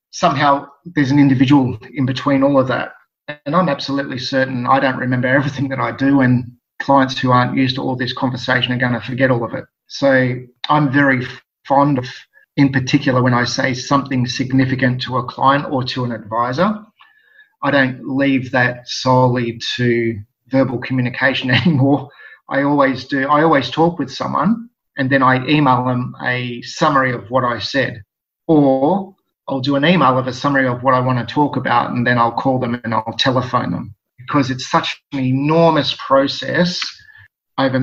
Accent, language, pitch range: Australian, English, 125-140 Hz